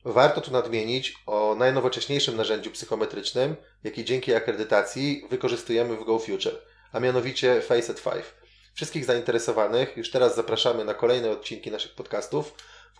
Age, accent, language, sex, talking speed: 20-39, native, Polish, male, 135 wpm